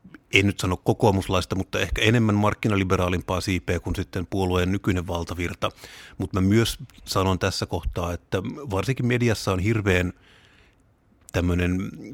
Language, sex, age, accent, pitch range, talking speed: Finnish, male, 30-49, native, 90-105 Hz, 130 wpm